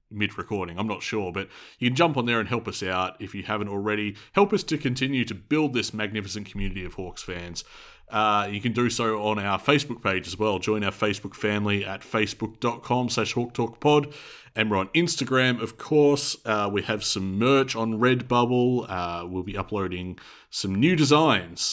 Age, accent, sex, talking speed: 30-49, Australian, male, 195 wpm